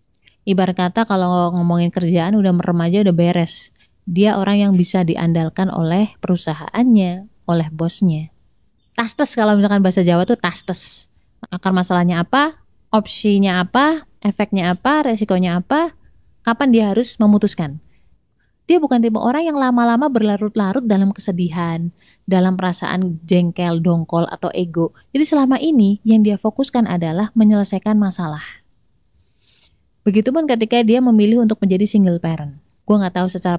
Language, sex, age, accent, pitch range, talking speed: Indonesian, female, 20-39, native, 175-215 Hz, 135 wpm